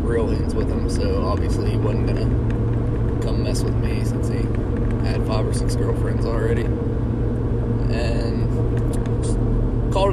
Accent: American